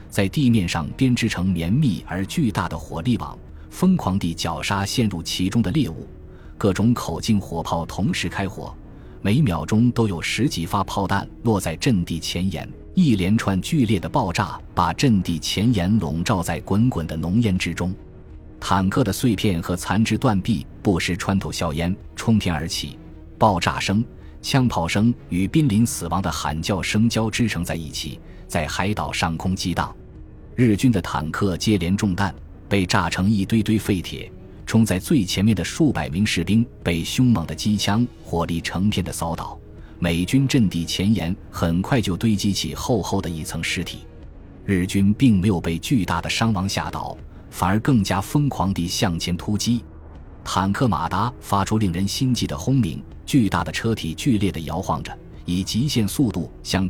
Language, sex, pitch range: Chinese, male, 85-110 Hz